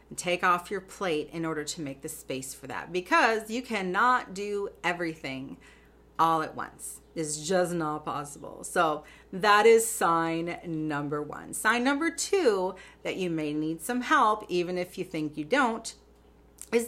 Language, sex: English, female